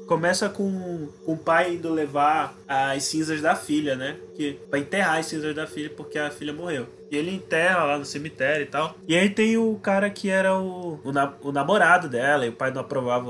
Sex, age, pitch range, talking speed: male, 20-39, 145-180 Hz, 210 wpm